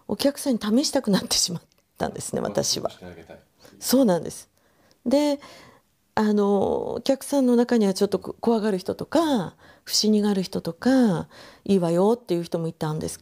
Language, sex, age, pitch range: Japanese, female, 40-59, 180-265 Hz